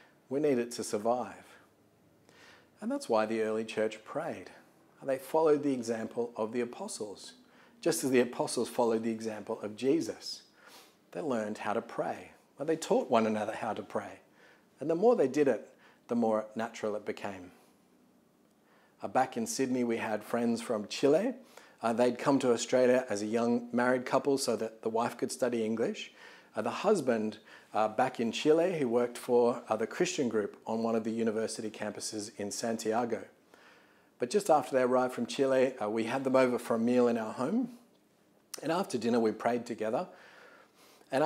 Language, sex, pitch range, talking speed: English, male, 110-135 Hz, 175 wpm